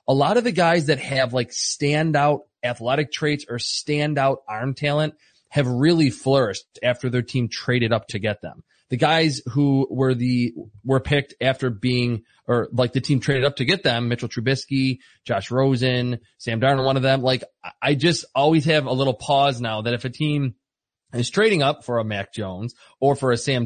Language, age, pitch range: English, 30-49, 125-150 Hz